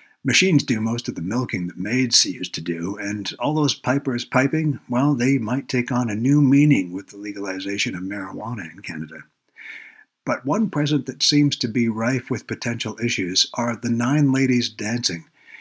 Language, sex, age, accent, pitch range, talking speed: English, male, 60-79, American, 110-135 Hz, 180 wpm